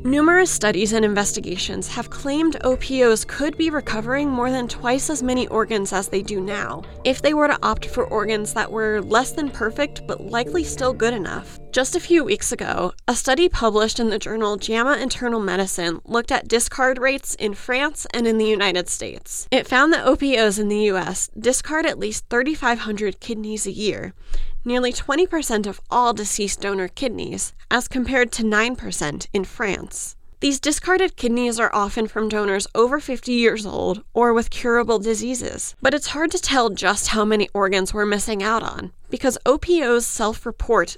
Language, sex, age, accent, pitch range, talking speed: English, female, 30-49, American, 210-265 Hz, 175 wpm